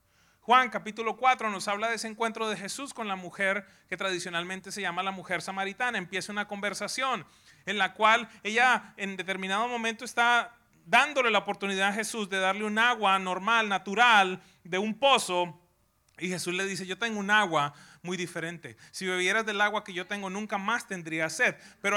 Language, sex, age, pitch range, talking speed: English, male, 30-49, 175-225 Hz, 185 wpm